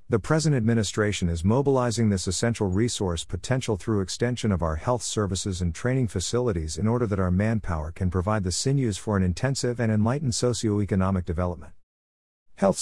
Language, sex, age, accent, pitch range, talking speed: English, male, 50-69, American, 90-115 Hz, 165 wpm